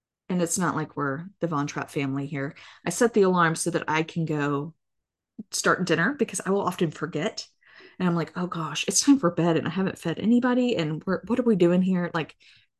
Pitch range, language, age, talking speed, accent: 160-195 Hz, English, 20-39, 225 wpm, American